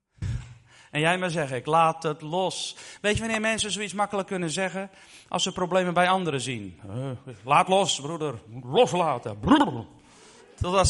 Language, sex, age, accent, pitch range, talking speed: Dutch, male, 40-59, Dutch, 135-185 Hz, 155 wpm